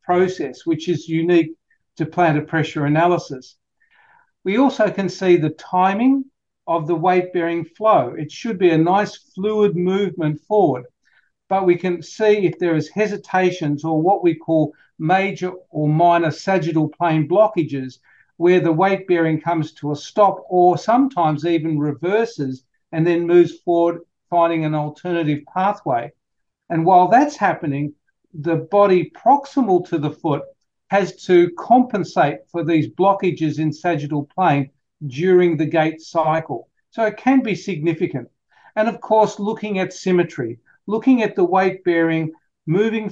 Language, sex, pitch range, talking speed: English, male, 160-200 Hz, 145 wpm